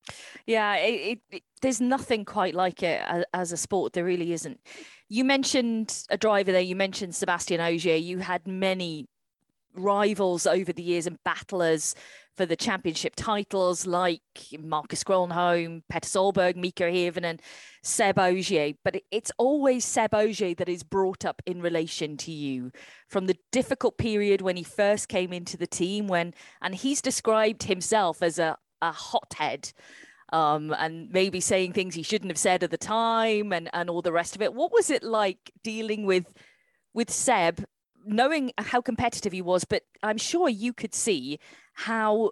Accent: British